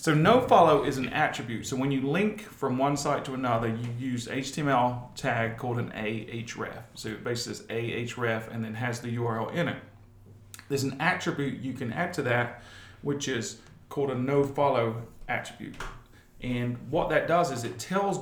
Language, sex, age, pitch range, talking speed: English, male, 40-59, 120-145 Hz, 180 wpm